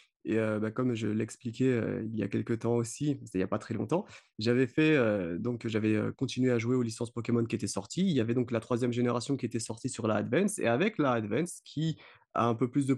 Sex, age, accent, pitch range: male, 30-49, French, 110-140 Hz